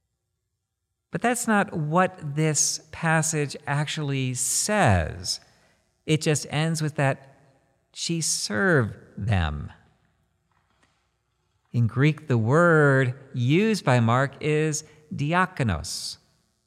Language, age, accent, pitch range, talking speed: English, 50-69, American, 130-160 Hz, 90 wpm